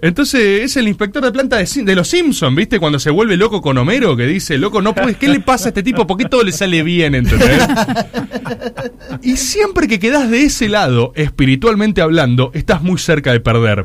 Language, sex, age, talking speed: Spanish, male, 20-39, 210 wpm